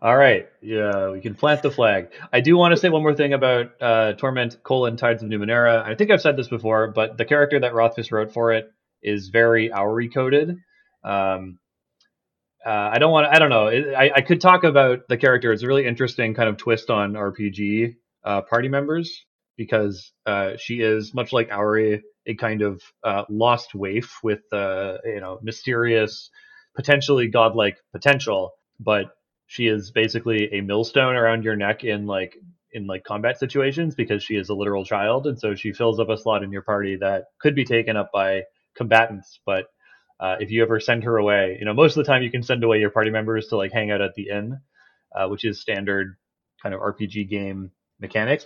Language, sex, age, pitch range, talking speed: English, male, 30-49, 105-125 Hz, 195 wpm